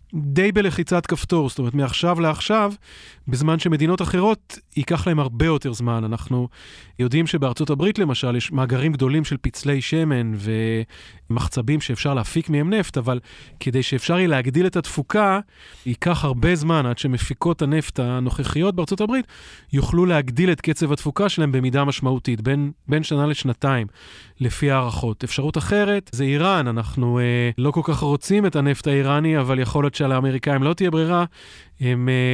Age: 30-49